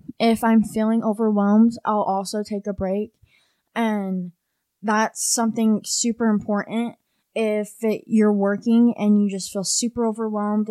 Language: English